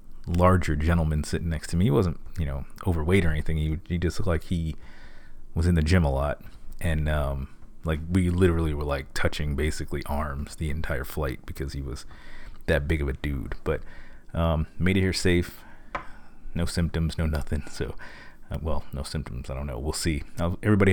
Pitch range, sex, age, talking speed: 75-95 Hz, male, 30-49, 190 wpm